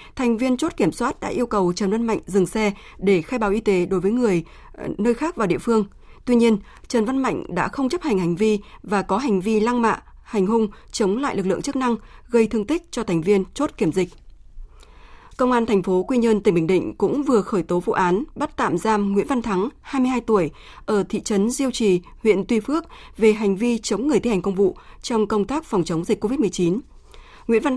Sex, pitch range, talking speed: female, 190-240 Hz, 235 wpm